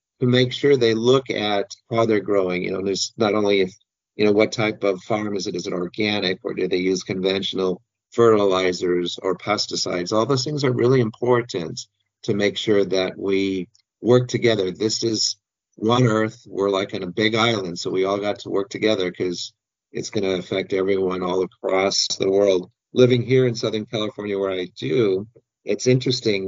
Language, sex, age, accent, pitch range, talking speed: English, male, 50-69, American, 95-115 Hz, 190 wpm